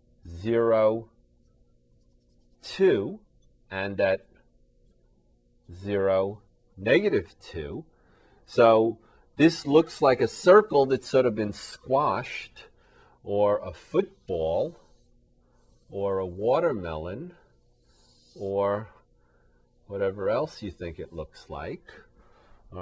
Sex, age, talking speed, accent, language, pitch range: male, 40-59, 85 wpm, American, English, 90-120 Hz